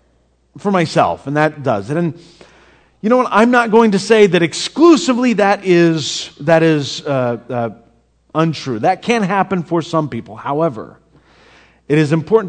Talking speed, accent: 165 wpm, American